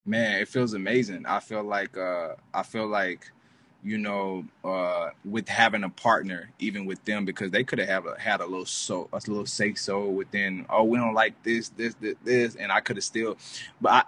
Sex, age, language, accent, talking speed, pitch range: male, 20-39, English, American, 215 wpm, 100-120 Hz